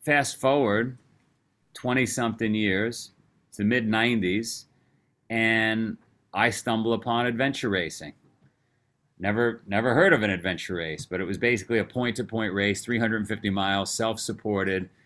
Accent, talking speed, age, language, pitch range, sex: American, 120 wpm, 40-59, English, 100-120 Hz, male